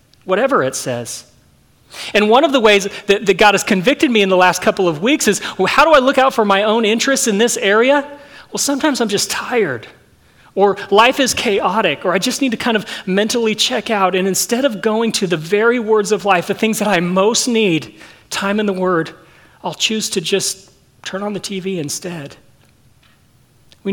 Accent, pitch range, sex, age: American, 190-235 Hz, male, 40-59